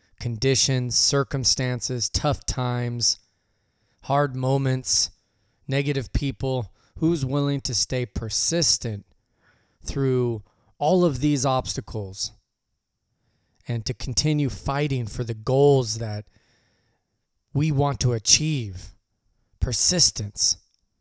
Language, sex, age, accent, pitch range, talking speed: English, male, 20-39, American, 110-140 Hz, 90 wpm